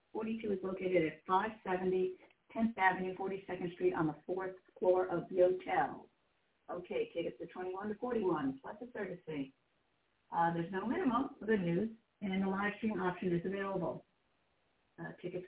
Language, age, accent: English, 50-69, American